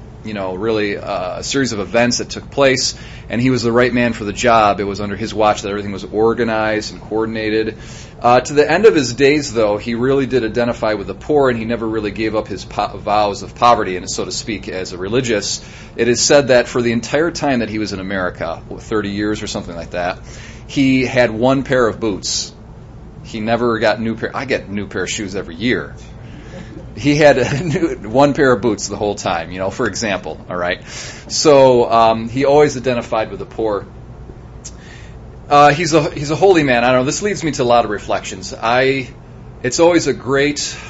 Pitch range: 105-130 Hz